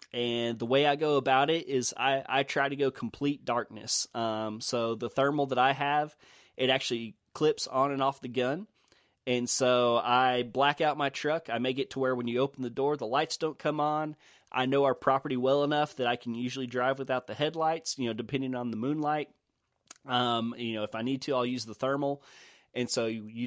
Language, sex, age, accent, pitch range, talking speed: English, male, 20-39, American, 120-140 Hz, 220 wpm